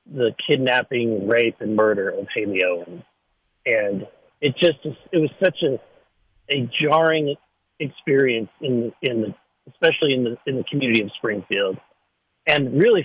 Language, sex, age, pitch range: English, male, 40-59, 125-170 Hz